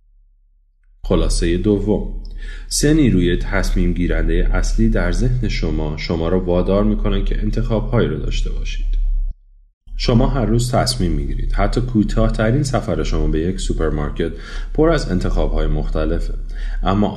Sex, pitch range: male, 80-105 Hz